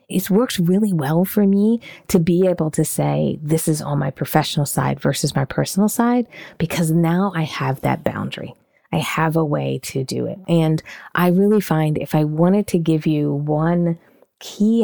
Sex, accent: female, American